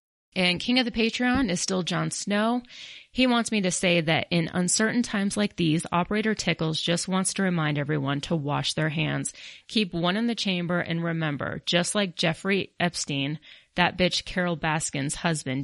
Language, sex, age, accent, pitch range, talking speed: English, female, 30-49, American, 155-190 Hz, 180 wpm